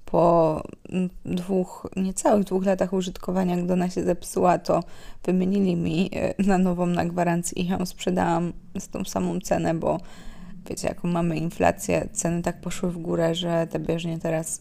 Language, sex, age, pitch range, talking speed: Polish, female, 20-39, 170-195 Hz, 155 wpm